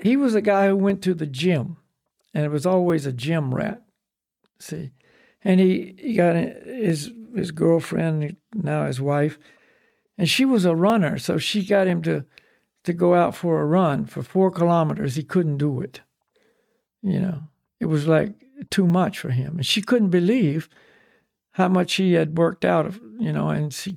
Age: 60-79